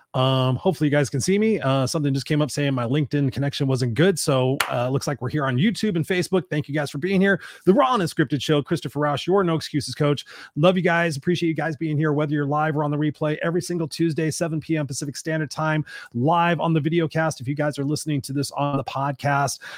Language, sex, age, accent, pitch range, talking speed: English, male, 30-49, American, 135-165 Hz, 250 wpm